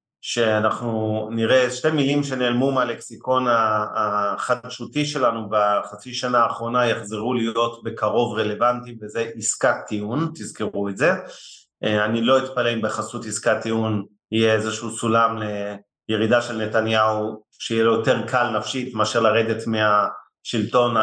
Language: Hebrew